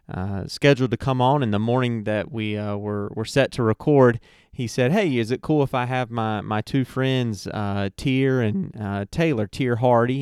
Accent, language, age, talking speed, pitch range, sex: American, English, 30-49, 210 wpm, 105-135 Hz, male